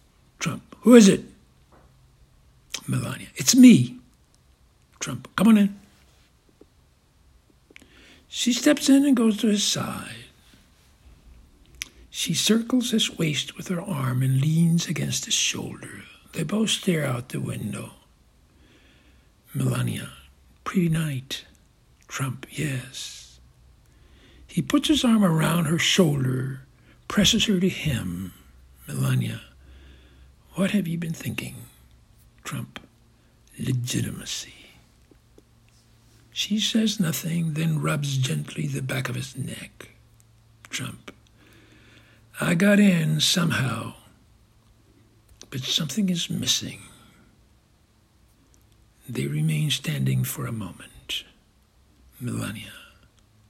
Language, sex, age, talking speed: English, male, 60-79, 100 wpm